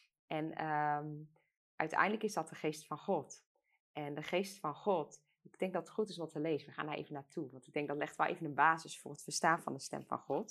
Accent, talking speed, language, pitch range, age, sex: Dutch, 255 wpm, Dutch, 155-210 Hz, 20-39, female